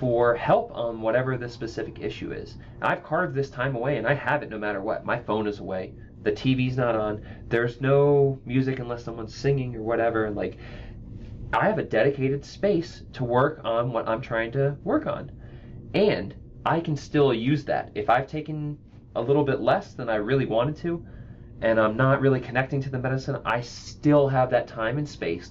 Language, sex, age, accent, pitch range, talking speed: English, male, 30-49, American, 115-140 Hz, 200 wpm